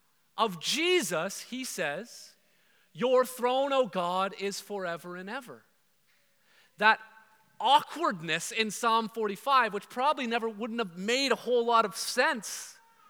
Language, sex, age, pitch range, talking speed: English, male, 30-49, 210-265 Hz, 130 wpm